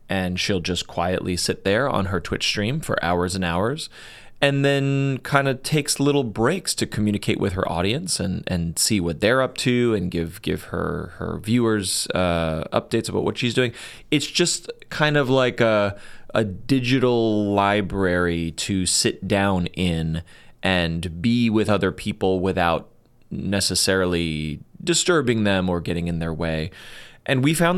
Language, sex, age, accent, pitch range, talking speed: English, male, 30-49, American, 90-125 Hz, 160 wpm